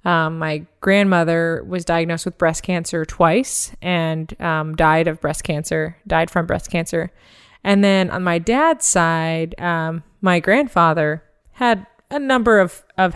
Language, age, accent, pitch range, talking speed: English, 20-39, American, 160-190 Hz, 150 wpm